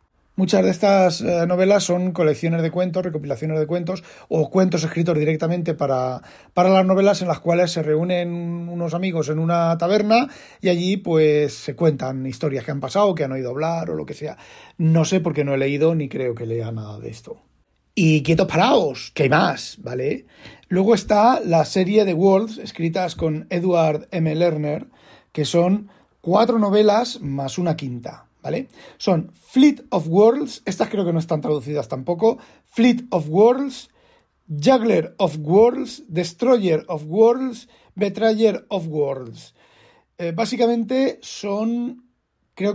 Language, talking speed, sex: Spanish, 160 wpm, male